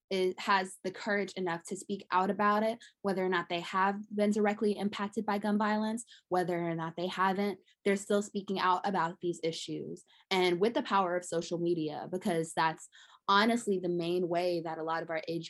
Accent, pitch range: American, 170-205 Hz